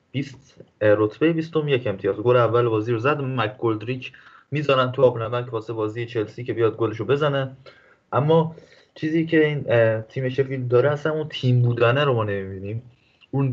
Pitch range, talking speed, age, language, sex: 110-130 Hz, 175 wpm, 20-39, Persian, male